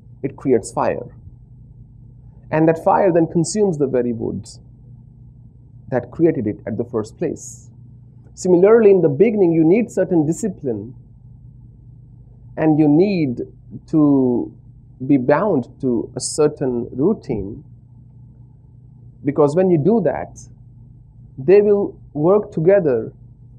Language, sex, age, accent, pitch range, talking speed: English, male, 40-59, Indian, 125-155 Hz, 115 wpm